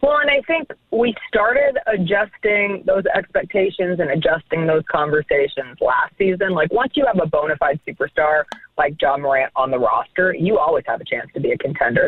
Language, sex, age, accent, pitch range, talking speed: English, female, 20-39, American, 155-225 Hz, 190 wpm